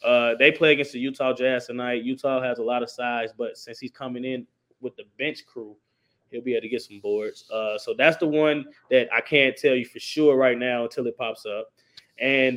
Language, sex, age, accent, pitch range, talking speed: English, male, 20-39, American, 120-140 Hz, 235 wpm